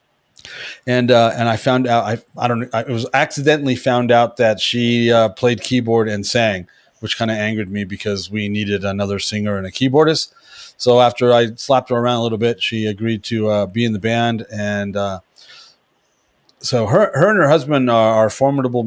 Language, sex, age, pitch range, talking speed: English, male, 30-49, 105-135 Hz, 195 wpm